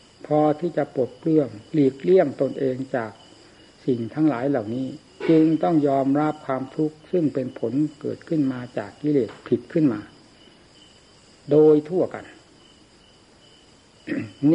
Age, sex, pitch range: 60-79, male, 130-155 Hz